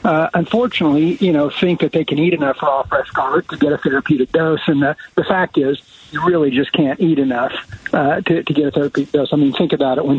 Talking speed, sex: 245 wpm, male